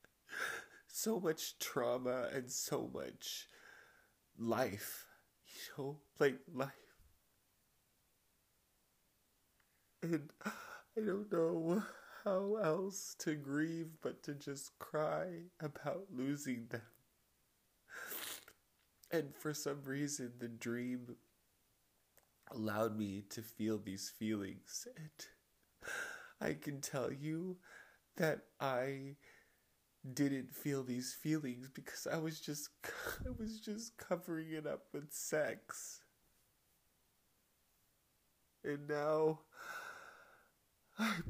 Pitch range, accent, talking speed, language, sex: 125-160 Hz, American, 95 wpm, English, male